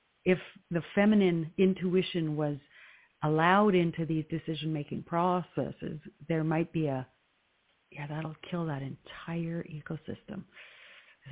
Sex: female